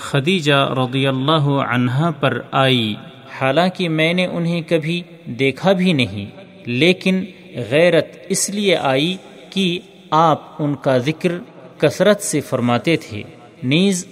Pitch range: 135-175 Hz